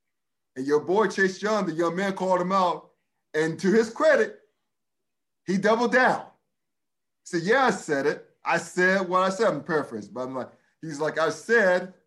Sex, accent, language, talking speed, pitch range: male, American, English, 190 wpm, 155-215 Hz